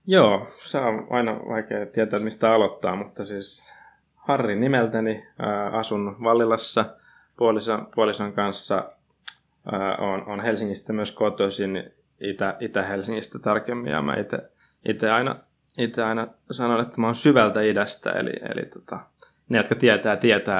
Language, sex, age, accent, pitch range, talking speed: Finnish, male, 20-39, native, 95-115 Hz, 135 wpm